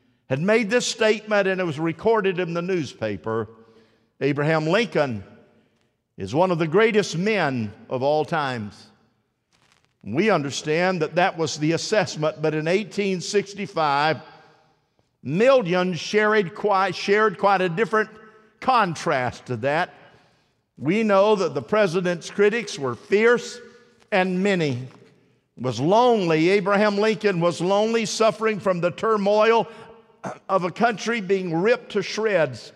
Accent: American